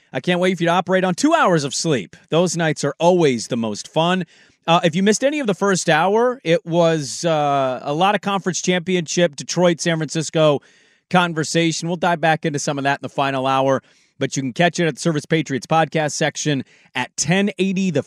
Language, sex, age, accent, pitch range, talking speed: English, male, 30-49, American, 145-175 Hz, 215 wpm